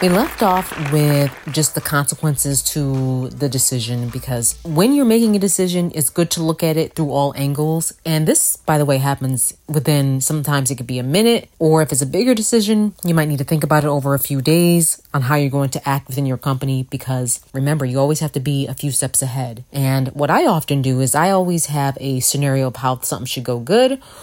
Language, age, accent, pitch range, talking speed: English, 30-49, American, 135-170 Hz, 230 wpm